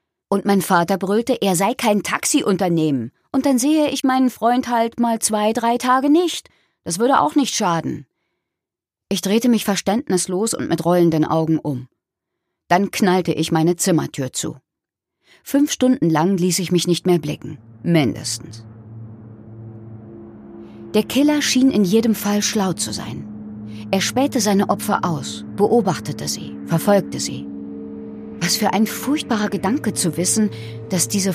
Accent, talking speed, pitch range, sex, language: German, 145 wpm, 155-225 Hz, female, German